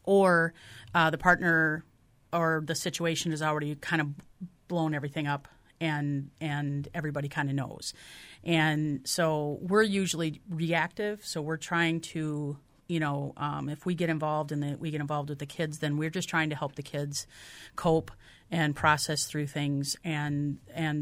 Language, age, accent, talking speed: English, 40-59, American, 170 wpm